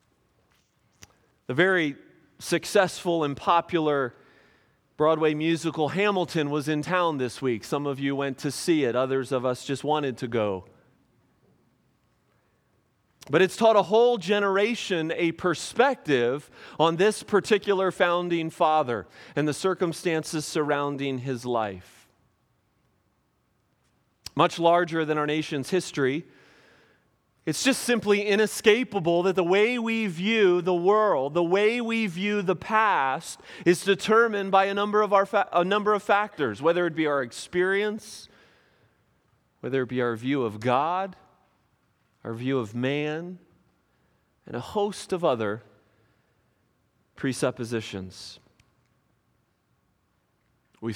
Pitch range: 135-195 Hz